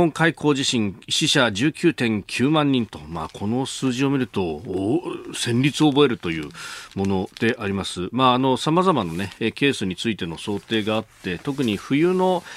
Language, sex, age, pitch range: Japanese, male, 40-59, 100-150 Hz